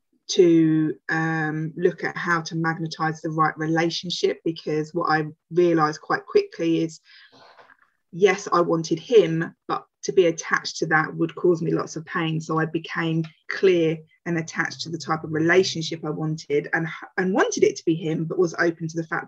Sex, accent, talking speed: female, British, 185 wpm